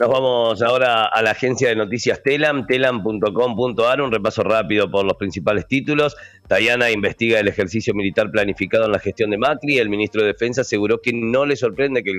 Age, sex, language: 40-59, male, Spanish